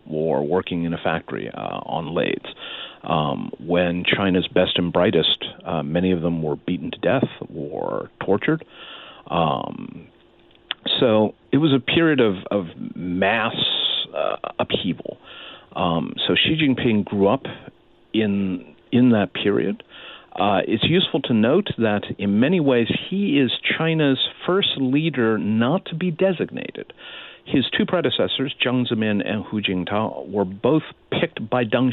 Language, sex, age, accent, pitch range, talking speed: English, male, 50-69, American, 95-135 Hz, 145 wpm